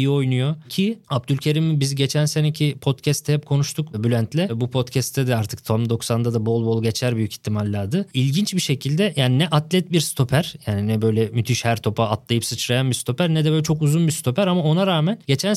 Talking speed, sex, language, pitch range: 200 wpm, male, Turkish, 130-165 Hz